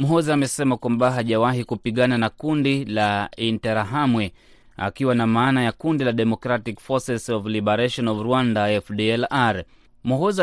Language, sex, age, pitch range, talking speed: Swahili, male, 20-39, 115-135 Hz, 130 wpm